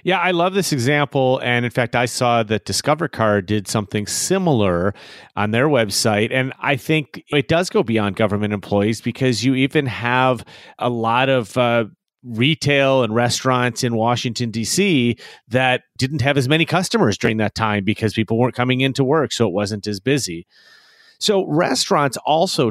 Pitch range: 110-145 Hz